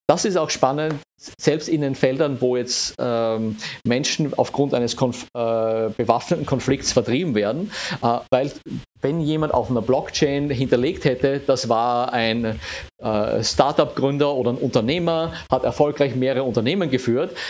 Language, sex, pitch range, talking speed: German, male, 120-145 Hz, 140 wpm